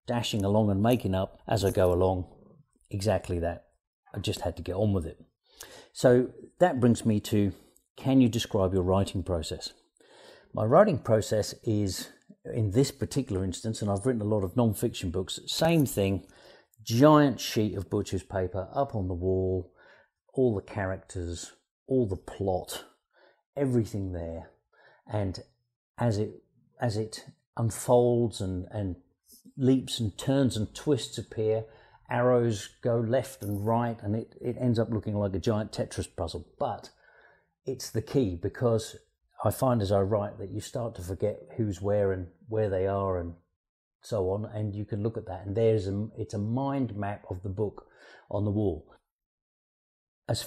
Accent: British